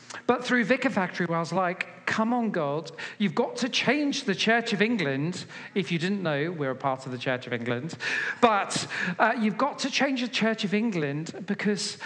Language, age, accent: English, 40-59, British